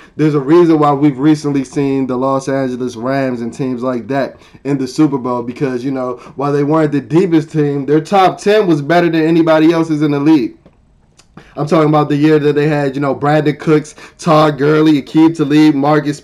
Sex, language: male, English